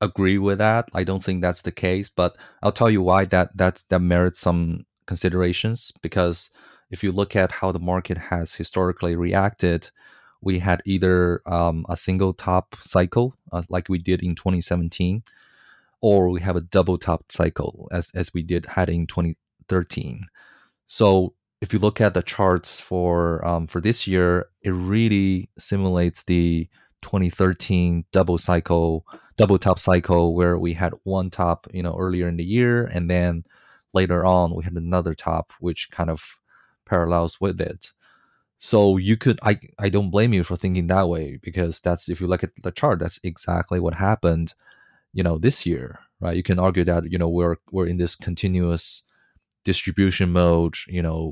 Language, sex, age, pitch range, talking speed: English, male, 20-39, 85-95 Hz, 175 wpm